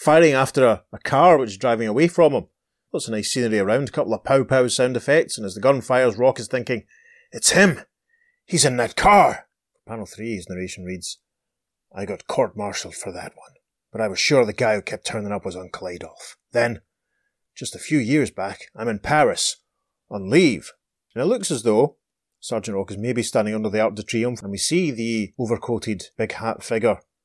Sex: male